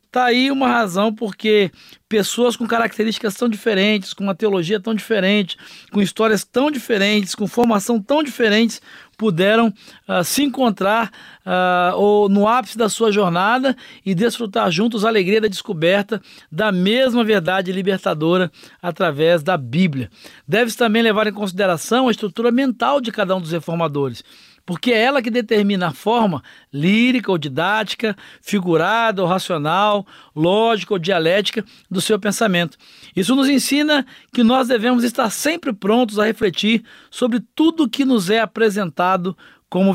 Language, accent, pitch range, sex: Portuguese, Brazilian, 190-240 Hz, male